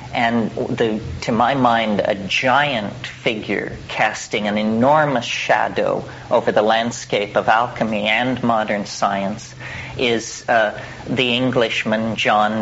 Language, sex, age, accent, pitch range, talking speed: English, male, 40-59, American, 110-130 Hz, 115 wpm